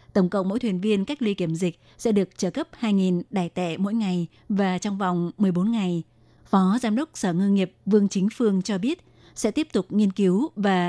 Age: 20-39